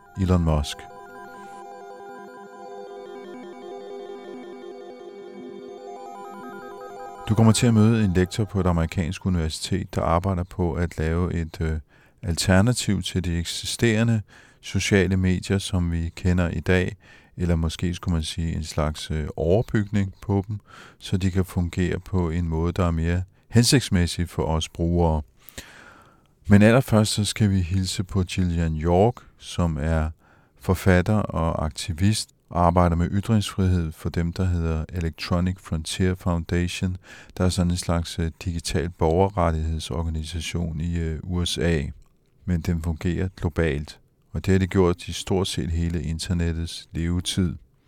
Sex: male